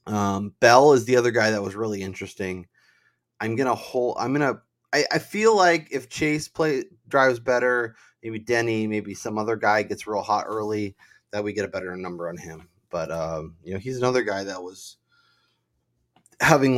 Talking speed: 190 wpm